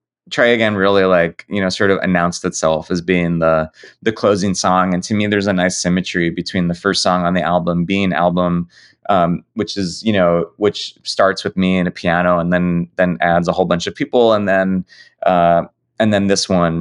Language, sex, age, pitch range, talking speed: English, male, 20-39, 85-100 Hz, 215 wpm